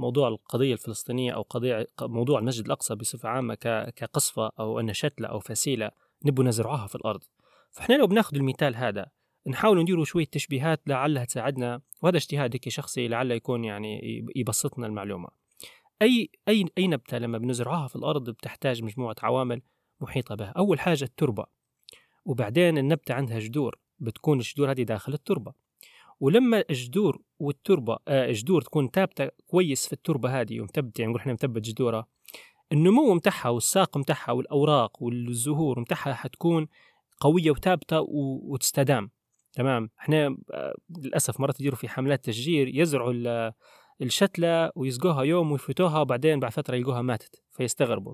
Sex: male